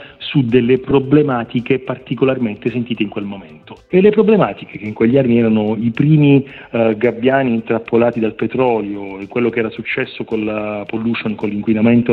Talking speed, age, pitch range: 165 wpm, 40-59, 110-130 Hz